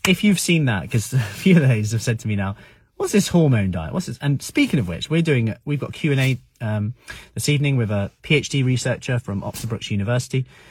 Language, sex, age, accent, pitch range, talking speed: English, male, 30-49, British, 105-145 Hz, 235 wpm